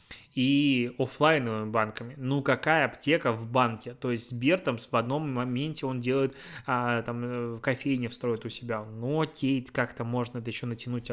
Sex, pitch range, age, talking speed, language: male, 120-150 Hz, 20-39, 155 wpm, Russian